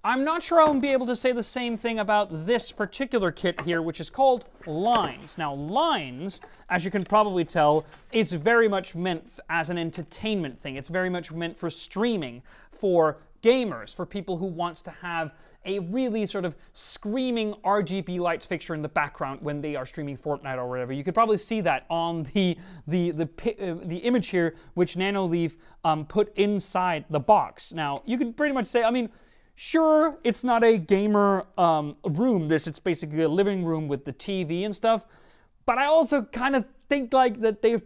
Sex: male